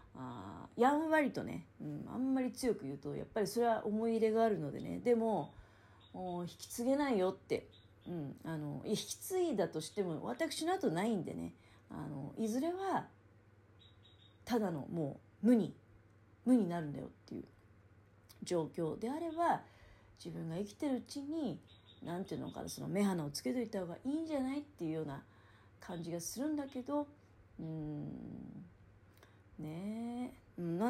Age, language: 40-59, Japanese